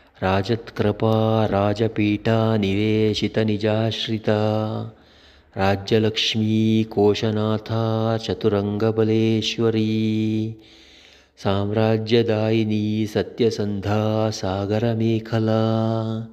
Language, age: English, 30-49